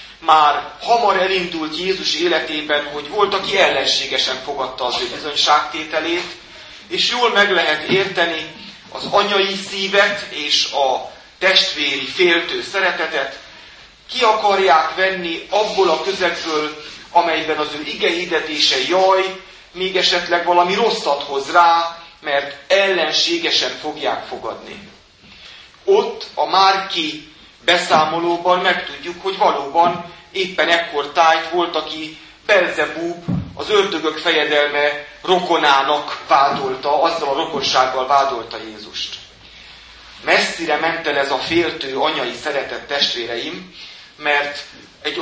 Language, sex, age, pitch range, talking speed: Hungarian, male, 30-49, 145-190 Hz, 105 wpm